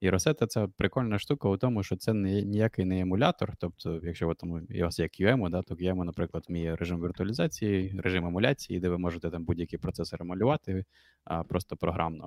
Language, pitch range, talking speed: Ukrainian, 85-100 Hz, 185 wpm